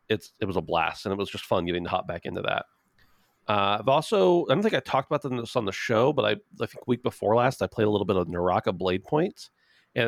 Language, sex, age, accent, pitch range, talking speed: English, male, 30-49, American, 95-125 Hz, 275 wpm